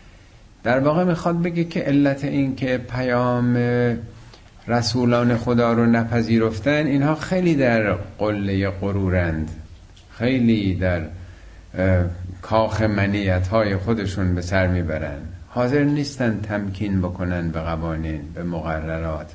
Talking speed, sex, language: 110 wpm, male, Persian